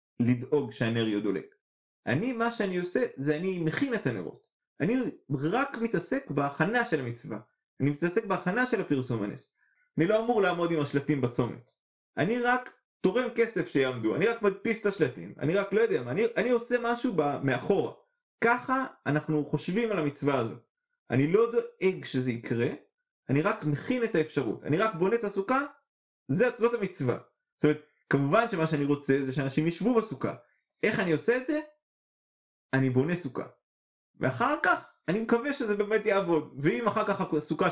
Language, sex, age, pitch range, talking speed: Hebrew, male, 30-49, 145-230 Hz, 155 wpm